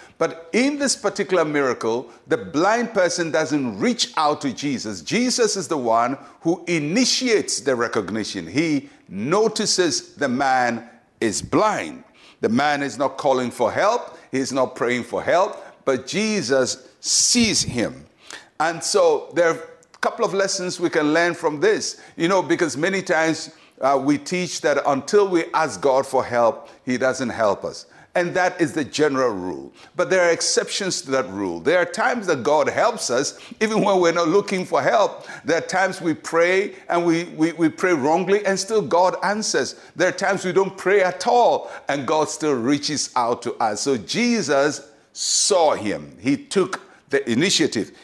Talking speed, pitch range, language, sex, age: 175 wpm, 150-200 Hz, English, male, 60-79